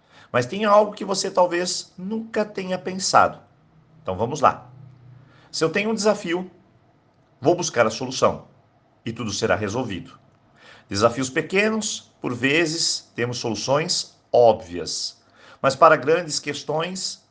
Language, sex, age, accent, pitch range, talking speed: Portuguese, male, 50-69, Brazilian, 115-165 Hz, 125 wpm